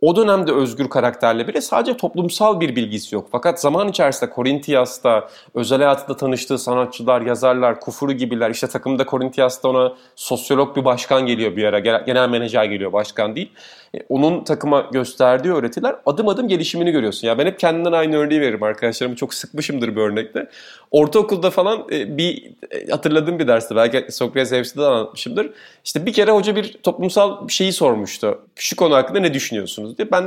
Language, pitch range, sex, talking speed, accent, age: Turkish, 130-200 Hz, male, 160 wpm, native, 30-49